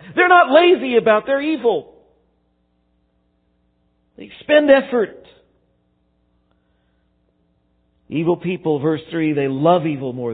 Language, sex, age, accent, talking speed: English, male, 50-69, American, 100 wpm